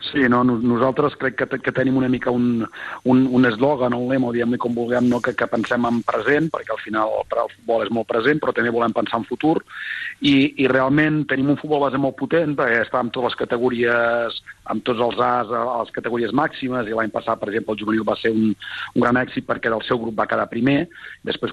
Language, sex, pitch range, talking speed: Spanish, male, 115-130 Hz, 230 wpm